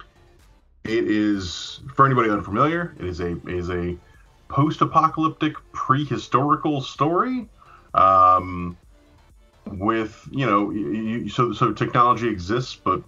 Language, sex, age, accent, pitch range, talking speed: English, male, 30-49, American, 90-115 Hz, 110 wpm